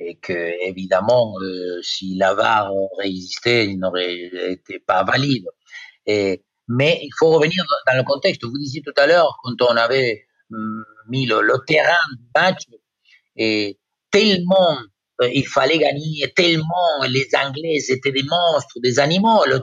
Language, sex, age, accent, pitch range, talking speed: French, male, 50-69, Italian, 130-200 Hz, 160 wpm